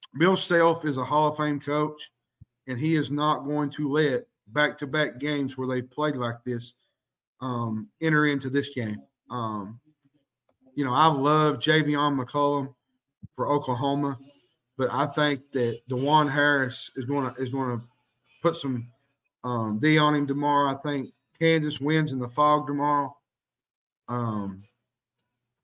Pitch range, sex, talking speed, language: 125-155 Hz, male, 150 wpm, English